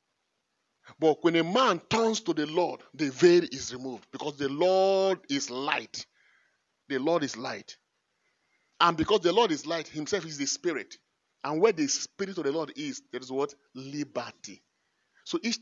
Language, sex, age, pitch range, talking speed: English, male, 30-49, 140-185 Hz, 175 wpm